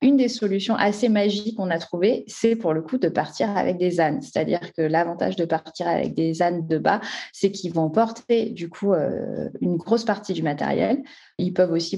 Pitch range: 170-230 Hz